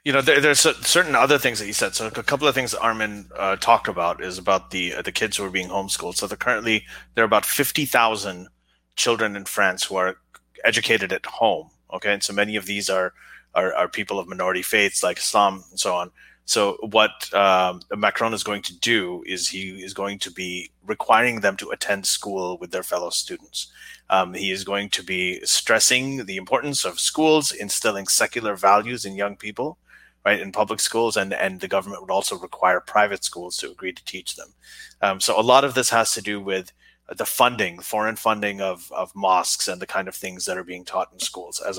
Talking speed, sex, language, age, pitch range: 215 wpm, male, English, 30-49, 95-115 Hz